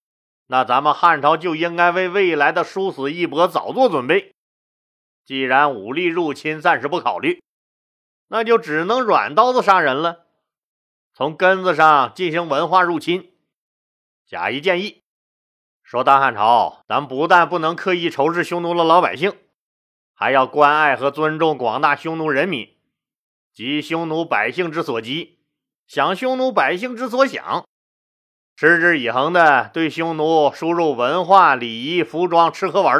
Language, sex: Chinese, male